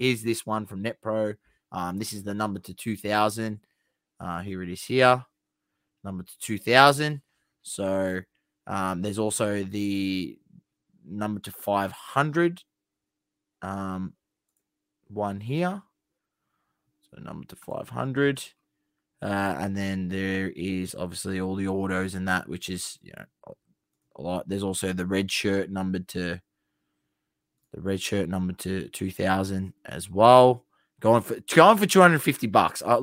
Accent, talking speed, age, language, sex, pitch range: Australian, 150 wpm, 20-39, English, male, 95-125 Hz